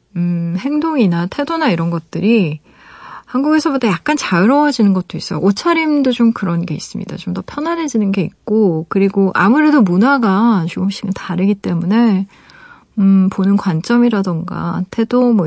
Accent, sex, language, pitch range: native, female, Korean, 180-230 Hz